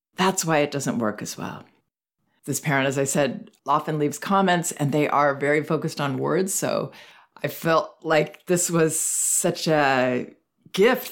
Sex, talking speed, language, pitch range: female, 165 wpm, English, 140-175 Hz